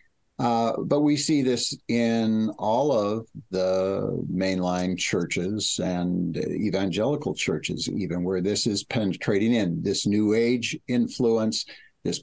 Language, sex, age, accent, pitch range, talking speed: English, male, 60-79, American, 95-120 Hz, 125 wpm